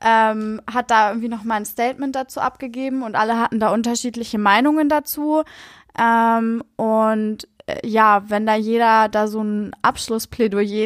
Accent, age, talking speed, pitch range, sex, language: German, 20-39, 155 wpm, 210-240 Hz, female, German